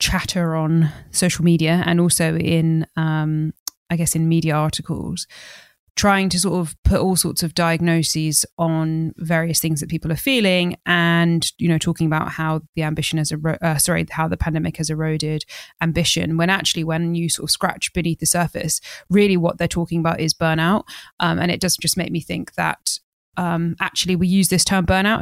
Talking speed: 190 wpm